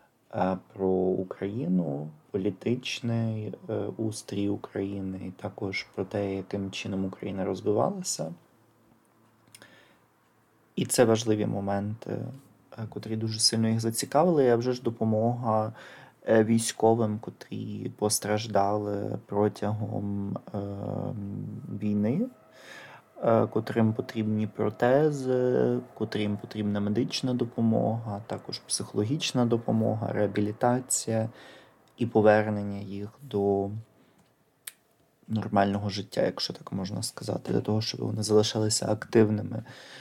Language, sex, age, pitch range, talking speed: Ukrainian, male, 30-49, 100-115 Hz, 90 wpm